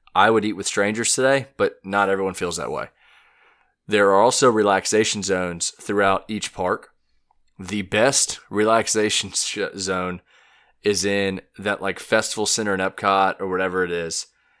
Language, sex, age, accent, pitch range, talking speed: English, male, 20-39, American, 95-105 Hz, 150 wpm